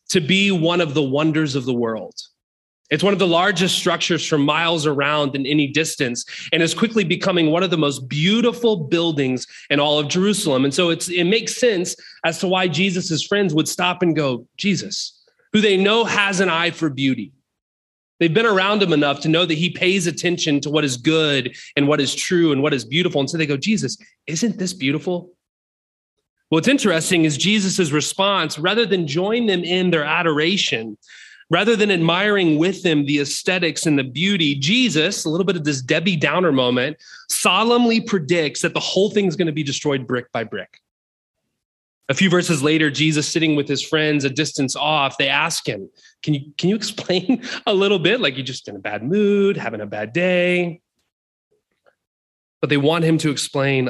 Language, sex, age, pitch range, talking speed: English, male, 30-49, 145-185 Hz, 195 wpm